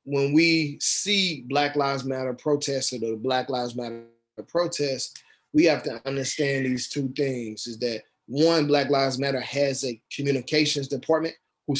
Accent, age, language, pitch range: American, 20-39, English, 130-160 Hz